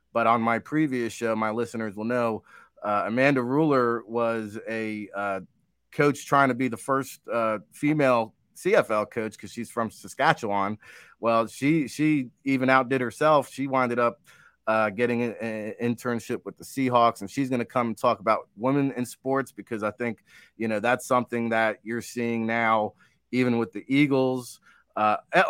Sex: male